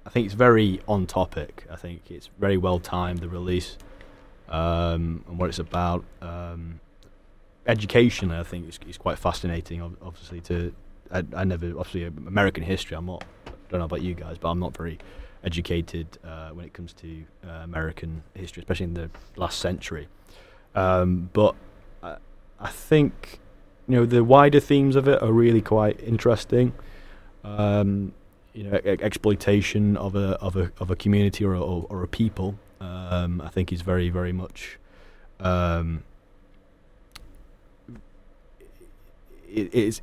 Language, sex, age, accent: English, male, 20-39, British